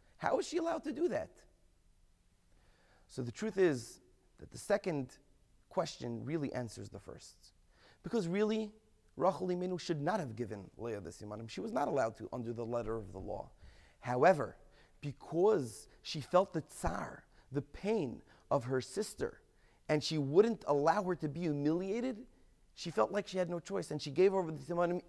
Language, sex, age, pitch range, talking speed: English, male, 30-49, 125-195 Hz, 175 wpm